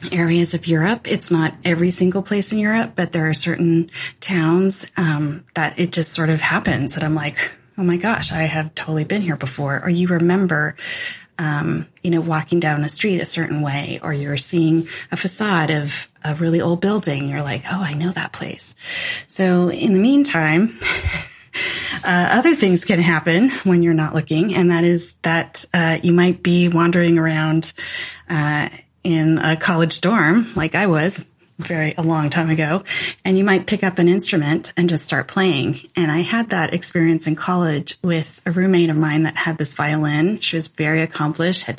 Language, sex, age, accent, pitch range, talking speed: English, female, 30-49, American, 160-180 Hz, 190 wpm